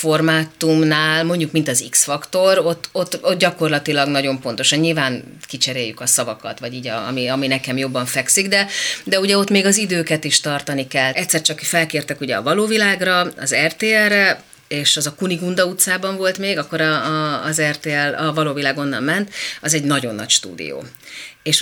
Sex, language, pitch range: female, Hungarian, 135-180 Hz